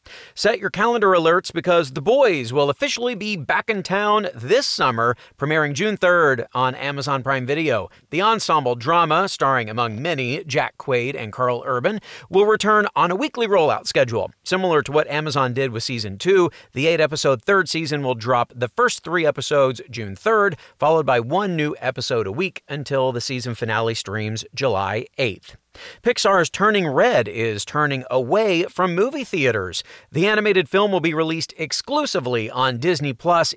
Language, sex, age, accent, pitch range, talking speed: English, male, 40-59, American, 130-185 Hz, 165 wpm